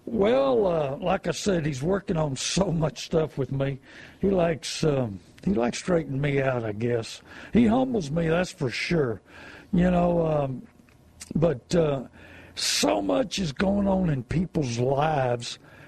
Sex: male